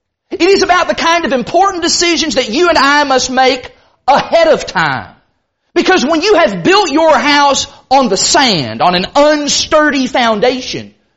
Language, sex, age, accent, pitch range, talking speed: English, male, 40-59, American, 275-350 Hz, 165 wpm